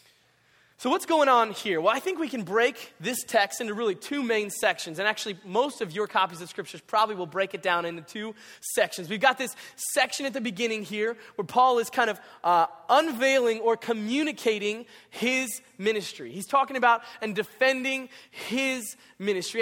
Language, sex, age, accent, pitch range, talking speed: English, male, 20-39, American, 195-265 Hz, 185 wpm